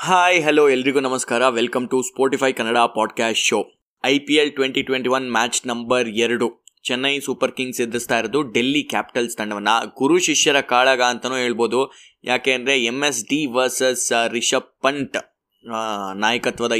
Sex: male